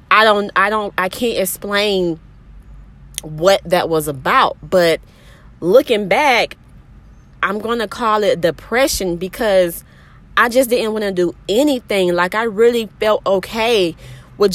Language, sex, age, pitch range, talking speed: English, female, 20-39, 170-220 Hz, 135 wpm